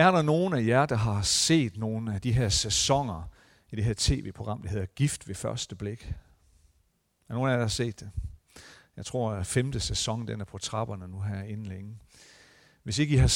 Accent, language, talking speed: native, Danish, 215 wpm